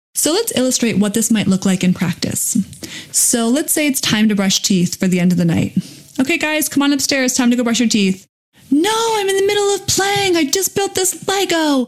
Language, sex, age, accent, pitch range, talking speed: English, female, 20-39, American, 190-255 Hz, 235 wpm